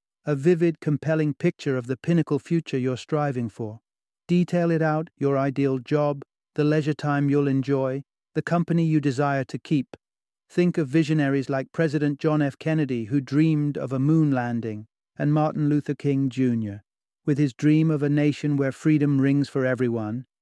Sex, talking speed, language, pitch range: male, 170 wpm, English, 125-150 Hz